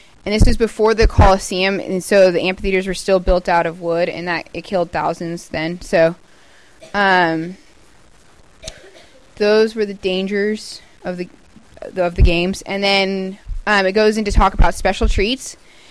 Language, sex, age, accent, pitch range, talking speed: Italian, female, 20-39, American, 180-210 Hz, 160 wpm